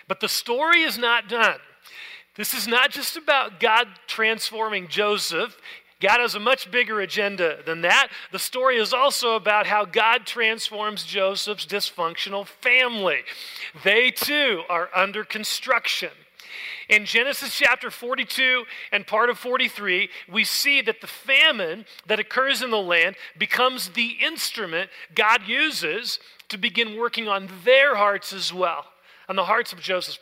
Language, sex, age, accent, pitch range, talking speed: English, male, 40-59, American, 190-250 Hz, 145 wpm